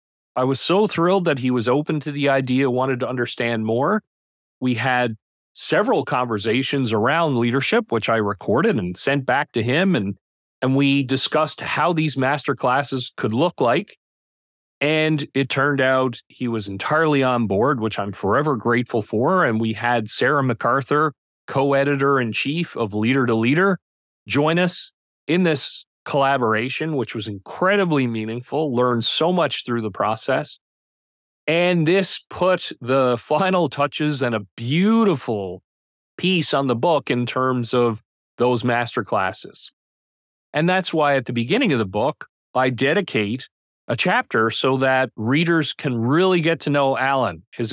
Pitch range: 120-150 Hz